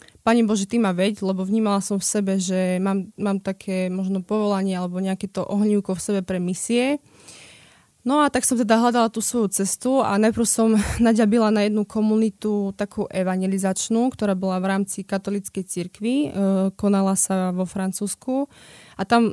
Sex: female